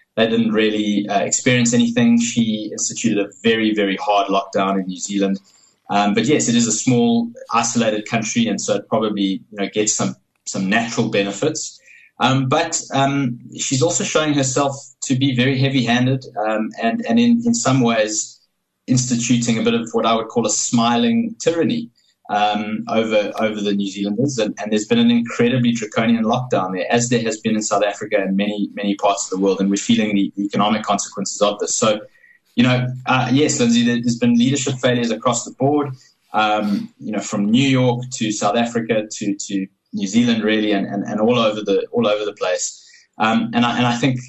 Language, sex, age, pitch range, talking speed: English, male, 20-39, 105-135 Hz, 190 wpm